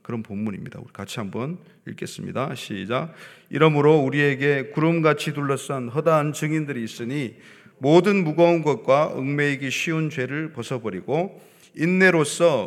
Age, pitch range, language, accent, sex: 30-49, 130-165 Hz, Korean, native, male